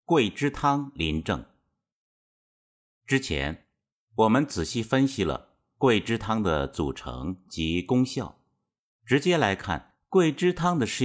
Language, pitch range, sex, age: Chinese, 80-130 Hz, male, 50-69